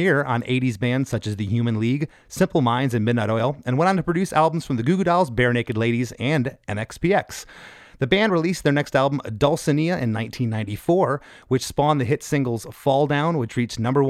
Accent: American